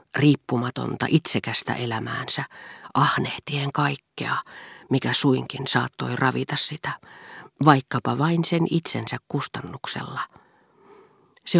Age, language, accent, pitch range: 40-59, Finnish, native, 120-170 Hz